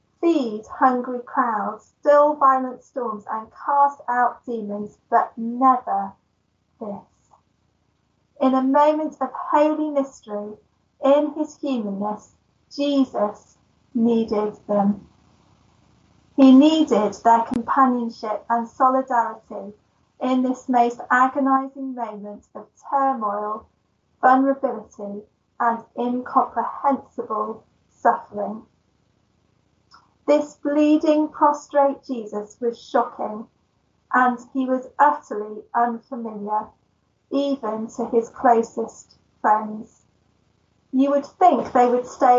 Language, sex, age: English, female, 30-49